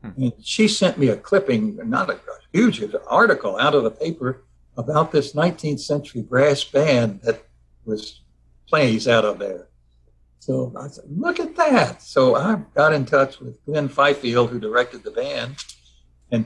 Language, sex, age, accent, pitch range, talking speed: English, male, 60-79, American, 110-150 Hz, 180 wpm